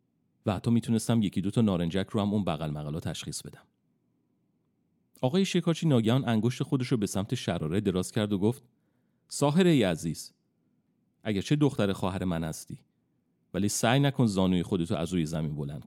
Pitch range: 95-120 Hz